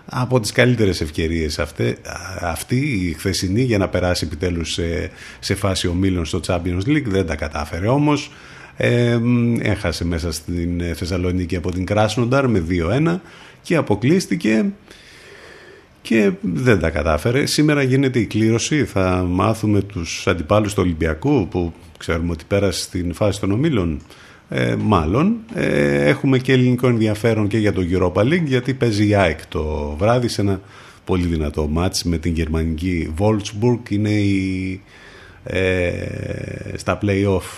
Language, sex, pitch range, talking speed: Greek, male, 85-115 Hz, 145 wpm